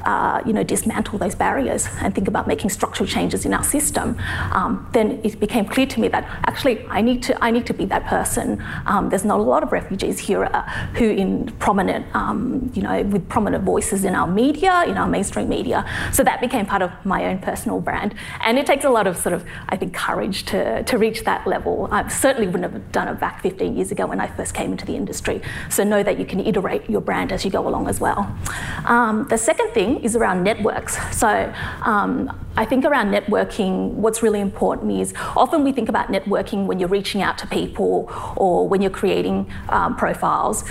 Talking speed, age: 215 wpm, 30-49